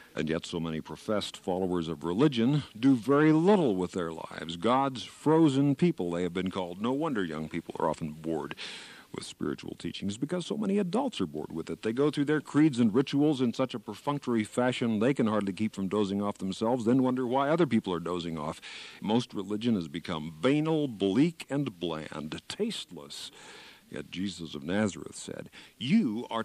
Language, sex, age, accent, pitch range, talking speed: English, male, 50-69, American, 90-140 Hz, 190 wpm